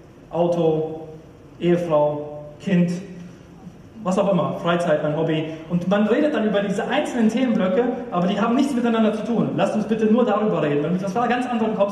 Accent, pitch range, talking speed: German, 180-245 Hz, 185 wpm